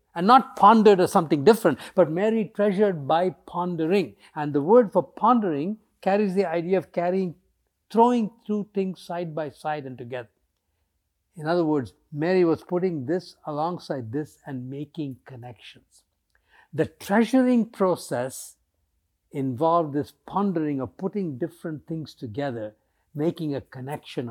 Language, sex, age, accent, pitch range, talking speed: English, male, 60-79, Indian, 130-205 Hz, 135 wpm